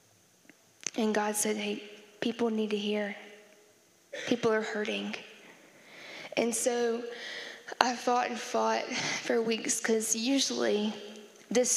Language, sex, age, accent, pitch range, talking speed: English, female, 10-29, American, 210-235 Hz, 110 wpm